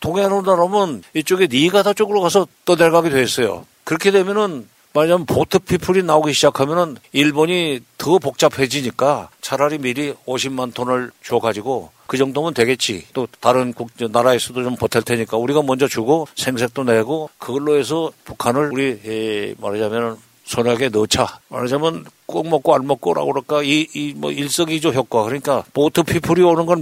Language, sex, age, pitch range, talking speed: English, male, 60-79, 120-160 Hz, 135 wpm